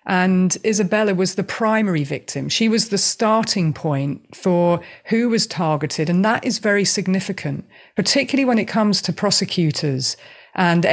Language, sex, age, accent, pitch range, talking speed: English, female, 40-59, British, 165-205 Hz, 150 wpm